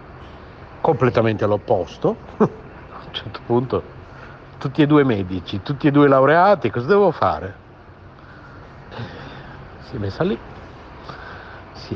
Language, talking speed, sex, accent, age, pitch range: Italian, 110 wpm, male, native, 60-79, 105-125 Hz